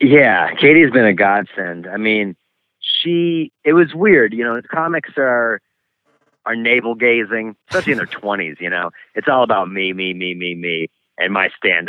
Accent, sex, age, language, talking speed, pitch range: American, male, 30-49, English, 180 wpm, 95-120 Hz